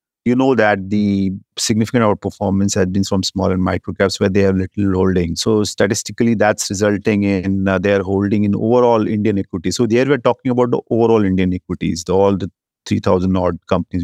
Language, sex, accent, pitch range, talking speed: English, male, Indian, 95-105 Hz, 185 wpm